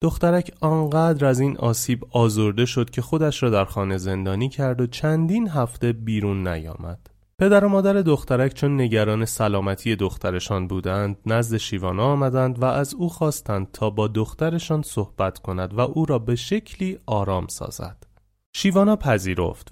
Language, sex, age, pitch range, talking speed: Persian, male, 30-49, 100-145 Hz, 150 wpm